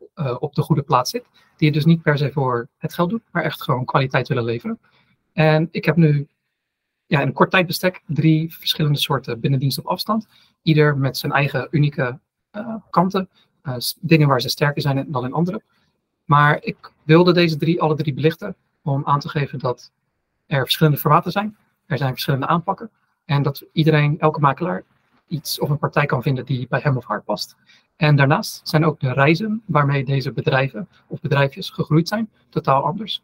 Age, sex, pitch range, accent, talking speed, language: 40-59, male, 140-170 Hz, Dutch, 190 wpm, Dutch